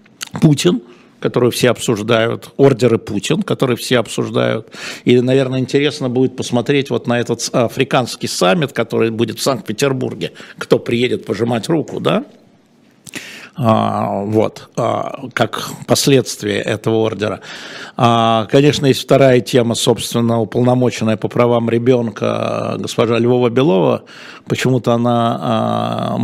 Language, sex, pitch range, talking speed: Russian, male, 115-130 Hz, 115 wpm